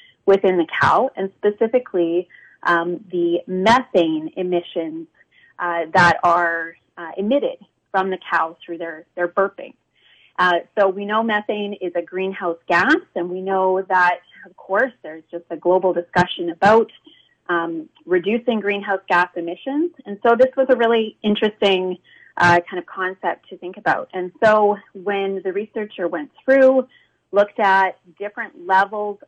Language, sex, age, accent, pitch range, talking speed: English, female, 30-49, American, 180-230 Hz, 150 wpm